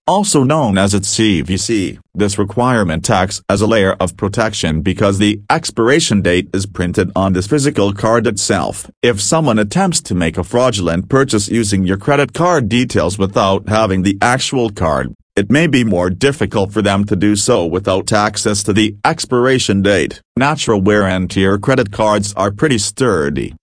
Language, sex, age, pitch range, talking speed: English, male, 40-59, 95-115 Hz, 170 wpm